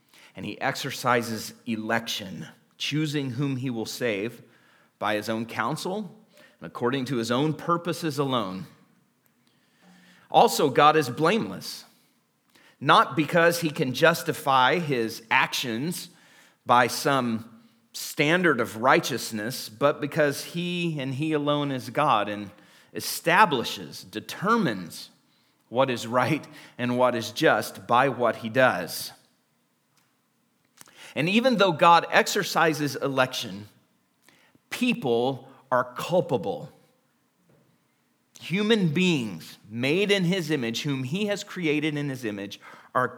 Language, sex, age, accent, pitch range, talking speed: English, male, 40-59, American, 115-160 Hz, 115 wpm